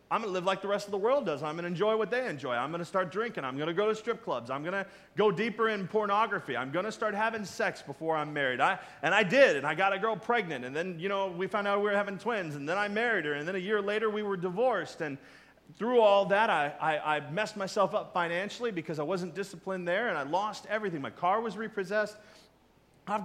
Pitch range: 170-220 Hz